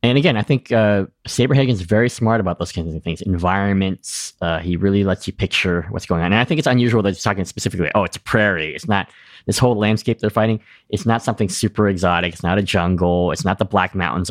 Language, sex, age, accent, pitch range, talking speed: English, male, 20-39, American, 85-105 Hz, 245 wpm